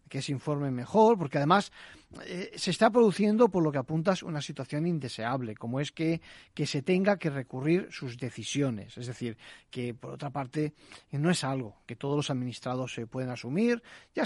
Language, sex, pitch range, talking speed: Spanish, male, 130-180 Hz, 185 wpm